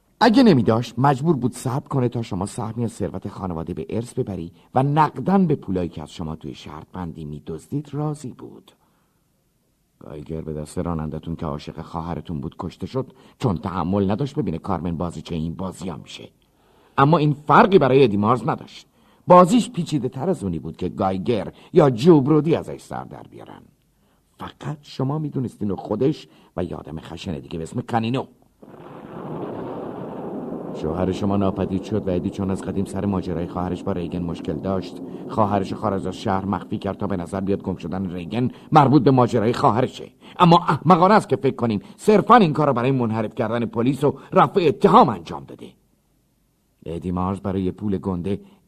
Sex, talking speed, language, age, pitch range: male, 165 wpm, Persian, 50-69, 85-135 Hz